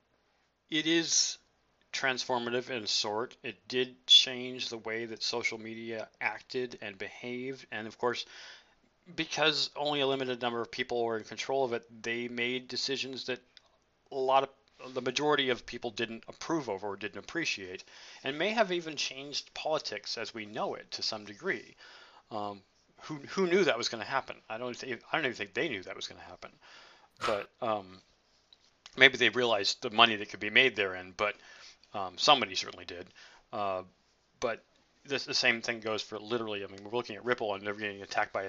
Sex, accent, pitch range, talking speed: male, American, 105-125 Hz, 190 wpm